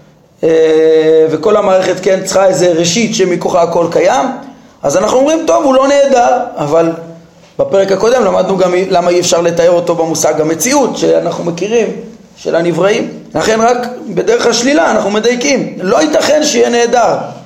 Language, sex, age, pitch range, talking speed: Hebrew, male, 30-49, 165-225 Hz, 145 wpm